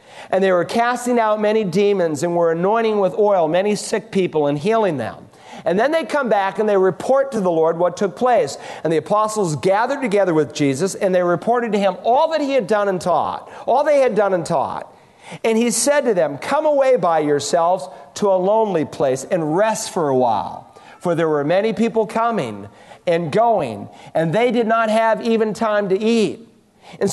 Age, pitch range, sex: 50-69, 175-230 Hz, male